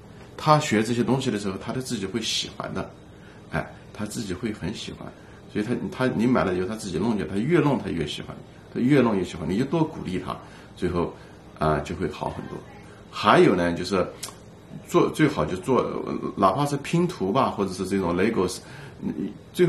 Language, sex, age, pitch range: Chinese, male, 50-69, 95-135 Hz